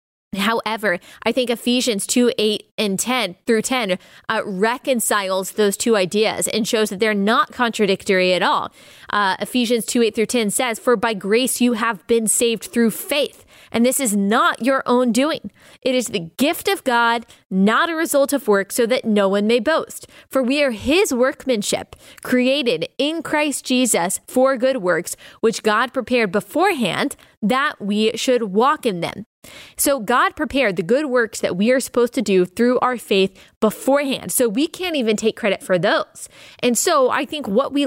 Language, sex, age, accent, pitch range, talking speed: English, female, 20-39, American, 215-260 Hz, 180 wpm